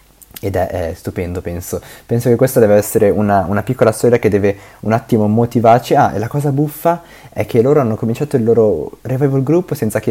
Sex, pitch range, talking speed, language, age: male, 95-125 Hz, 210 wpm, Italian, 20-39